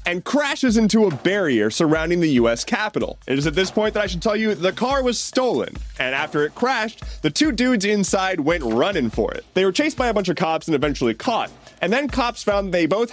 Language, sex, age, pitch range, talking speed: English, male, 30-49, 155-220 Hz, 240 wpm